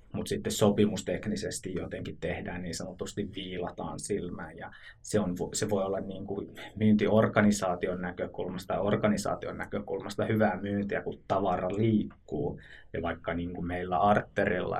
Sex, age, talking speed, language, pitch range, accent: male, 20-39, 135 wpm, Finnish, 95-110 Hz, native